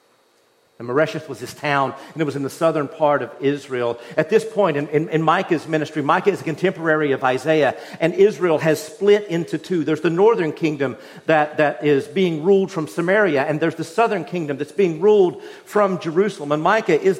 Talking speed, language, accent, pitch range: 200 wpm, English, American, 150-195 Hz